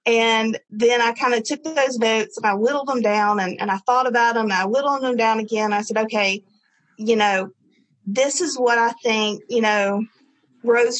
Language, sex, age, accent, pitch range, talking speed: English, female, 30-49, American, 210-250 Hz, 200 wpm